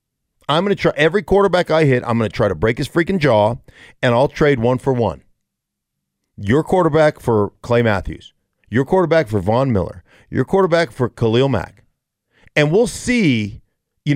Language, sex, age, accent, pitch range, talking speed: English, male, 50-69, American, 115-150 Hz, 180 wpm